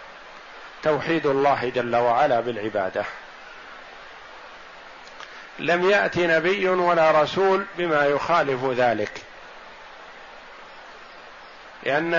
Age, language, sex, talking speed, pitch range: 50-69, Arabic, male, 70 wpm, 140-175 Hz